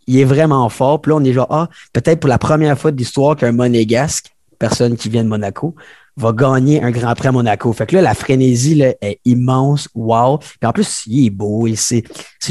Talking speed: 230 wpm